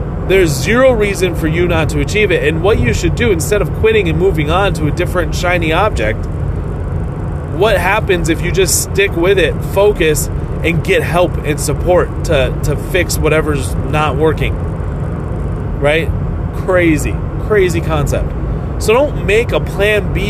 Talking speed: 165 wpm